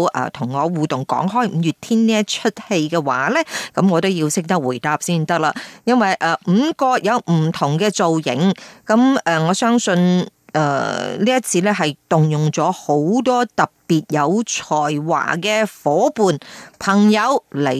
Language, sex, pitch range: Chinese, female, 165-230 Hz